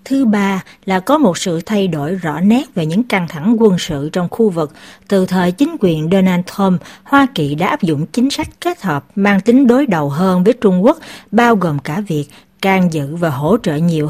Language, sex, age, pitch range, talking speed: Vietnamese, female, 60-79, 165-225 Hz, 220 wpm